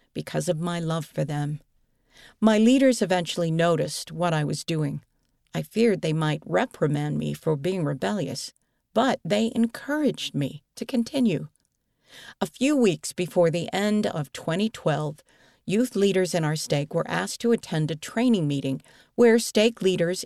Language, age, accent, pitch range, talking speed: English, 50-69, American, 155-230 Hz, 155 wpm